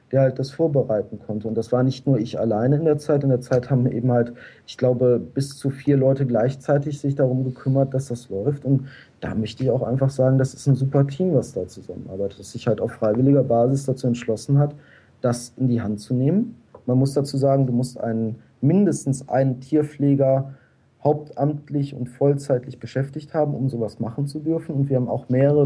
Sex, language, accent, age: male, German, German, 40-59